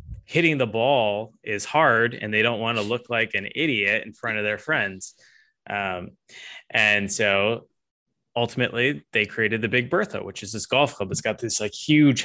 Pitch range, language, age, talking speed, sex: 105-130 Hz, English, 20-39, 185 wpm, male